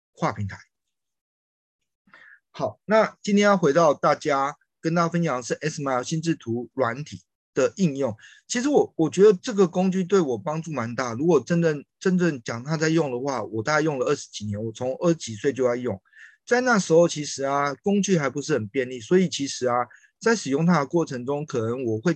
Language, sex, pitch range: Chinese, male, 125-170 Hz